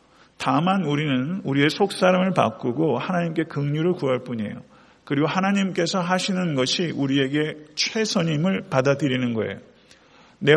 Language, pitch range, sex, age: Korean, 135-180 Hz, male, 50-69